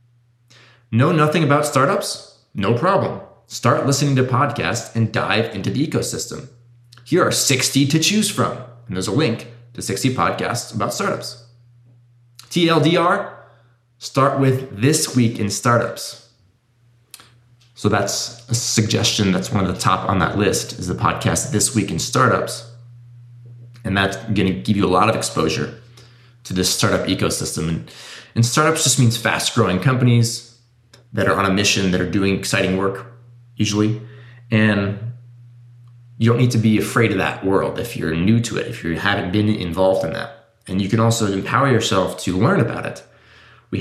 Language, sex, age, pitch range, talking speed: English, male, 20-39, 105-120 Hz, 165 wpm